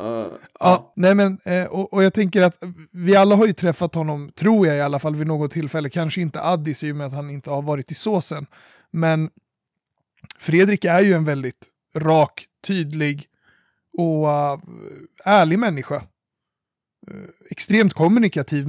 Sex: male